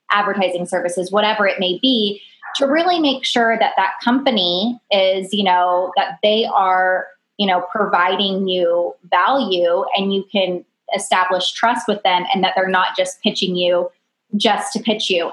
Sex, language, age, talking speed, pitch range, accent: female, English, 20-39, 165 wpm, 185-215 Hz, American